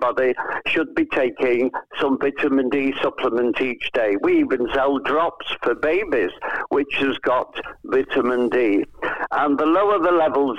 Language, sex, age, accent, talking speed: English, male, 60-79, British, 140 wpm